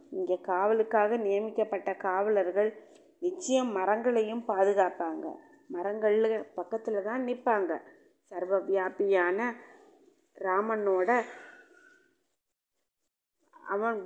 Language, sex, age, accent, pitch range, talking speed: Tamil, female, 20-39, native, 190-245 Hz, 65 wpm